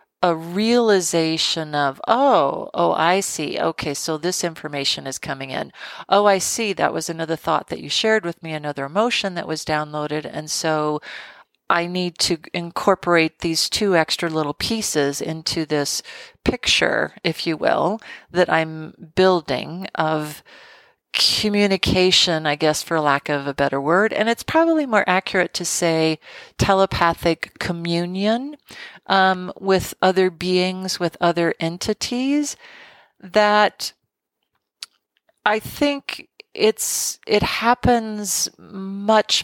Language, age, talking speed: English, 40-59, 130 wpm